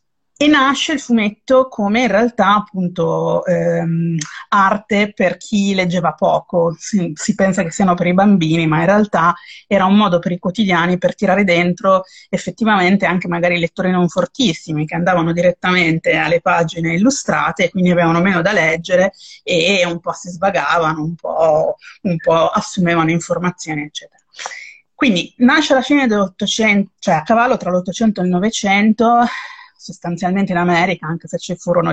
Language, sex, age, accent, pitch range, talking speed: Italian, female, 30-49, native, 170-205 Hz, 160 wpm